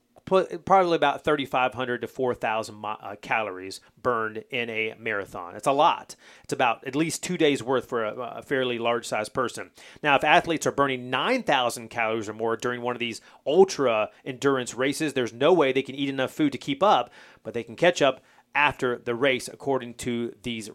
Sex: male